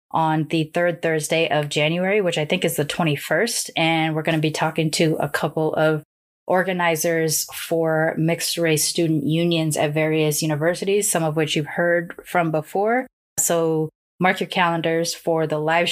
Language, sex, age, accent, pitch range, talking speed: English, female, 20-39, American, 150-170 Hz, 170 wpm